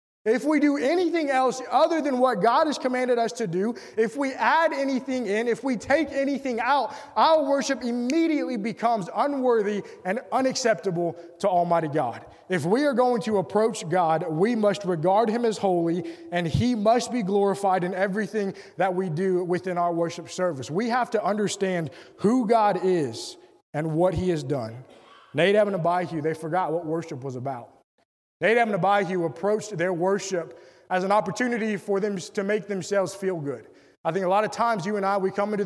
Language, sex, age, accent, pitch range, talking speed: English, male, 20-39, American, 175-230 Hz, 190 wpm